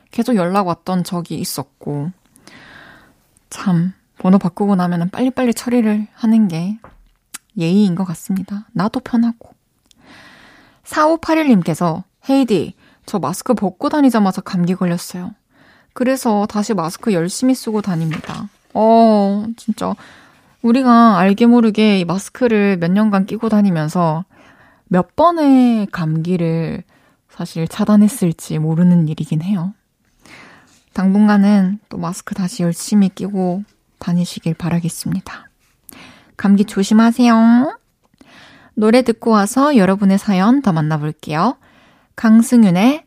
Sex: female